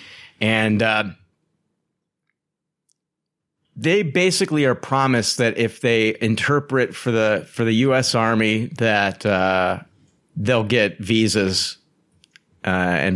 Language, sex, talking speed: English, male, 105 wpm